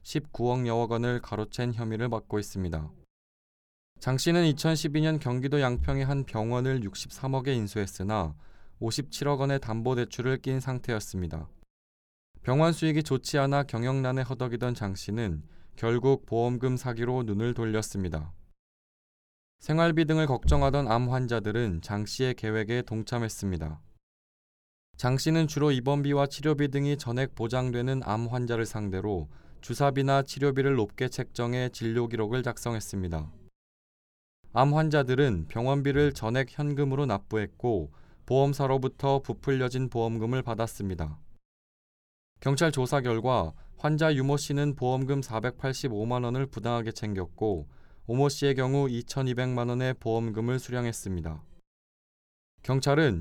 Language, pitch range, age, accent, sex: Korean, 105-135 Hz, 20-39, native, male